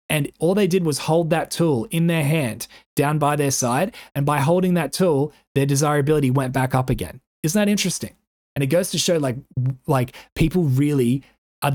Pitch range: 125-155 Hz